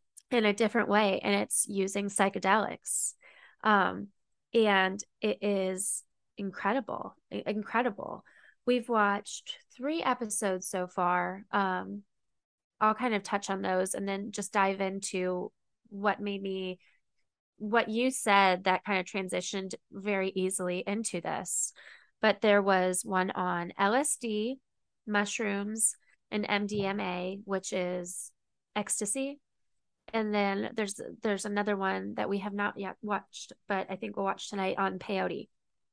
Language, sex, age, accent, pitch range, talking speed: English, female, 20-39, American, 195-230 Hz, 130 wpm